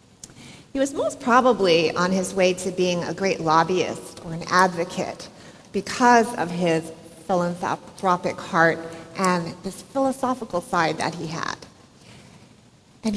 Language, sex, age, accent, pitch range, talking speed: English, female, 40-59, American, 175-210 Hz, 130 wpm